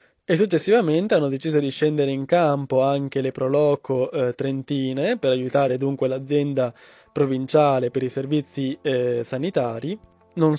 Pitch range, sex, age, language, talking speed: 130-145 Hz, male, 20-39, Italian, 130 wpm